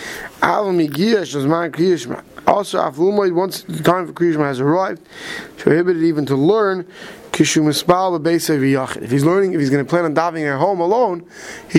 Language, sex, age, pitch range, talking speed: English, male, 20-39, 145-175 Hz, 135 wpm